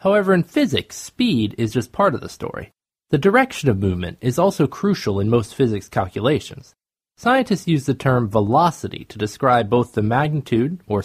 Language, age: English, 20-39